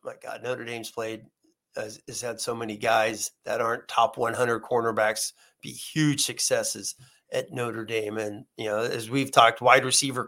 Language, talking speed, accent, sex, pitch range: English, 175 wpm, American, male, 125-150 Hz